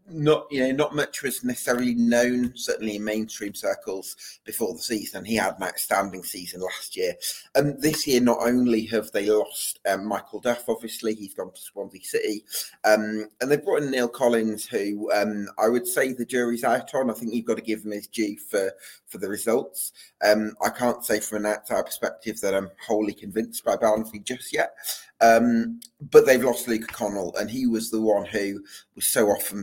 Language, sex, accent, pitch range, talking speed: English, male, British, 100-120 Hz, 200 wpm